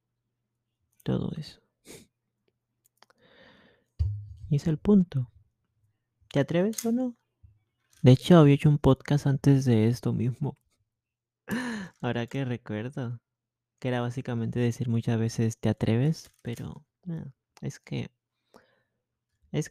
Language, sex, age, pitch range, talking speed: Spanish, male, 20-39, 110-140 Hz, 105 wpm